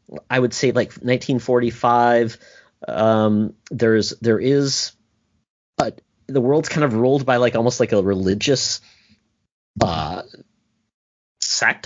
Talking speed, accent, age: 120 wpm, American, 30-49